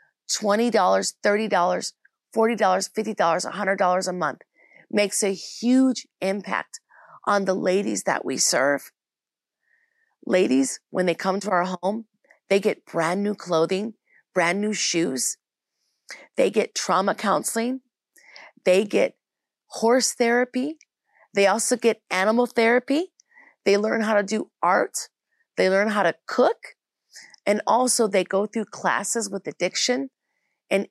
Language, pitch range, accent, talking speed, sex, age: English, 190-255 Hz, American, 115 wpm, female, 30-49